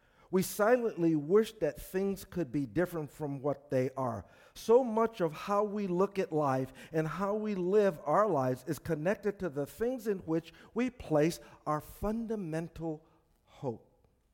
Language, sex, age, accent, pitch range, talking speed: English, male, 50-69, American, 160-225 Hz, 160 wpm